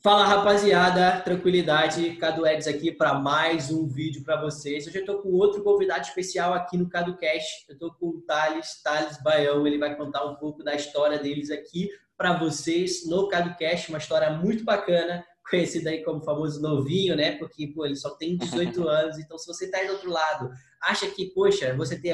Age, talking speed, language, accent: 20-39, 195 wpm, Portuguese, Brazilian